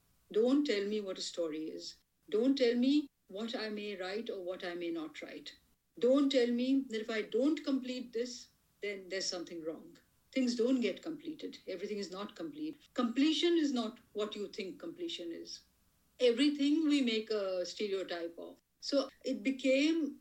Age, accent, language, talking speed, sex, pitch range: 50-69, Indian, English, 170 wpm, female, 185-260 Hz